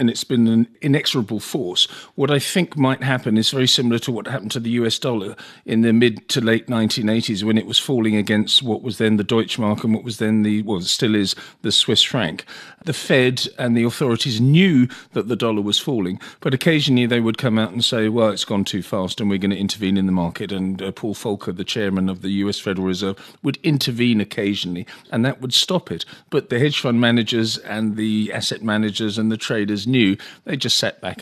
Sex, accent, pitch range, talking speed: male, British, 100-120 Hz, 225 wpm